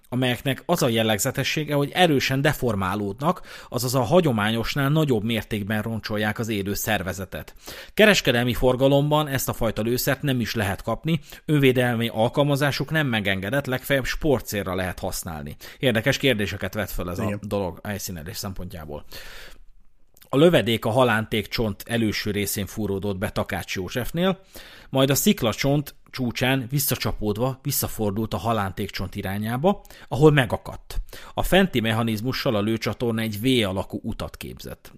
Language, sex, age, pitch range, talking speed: Hungarian, male, 30-49, 100-130 Hz, 130 wpm